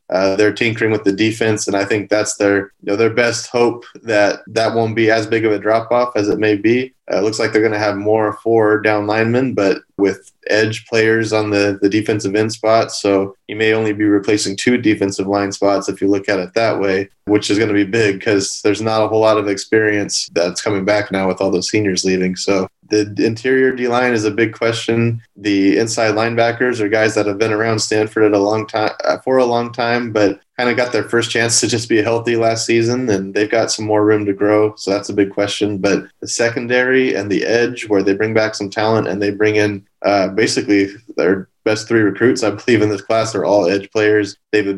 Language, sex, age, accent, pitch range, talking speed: English, male, 20-39, American, 100-115 Hz, 235 wpm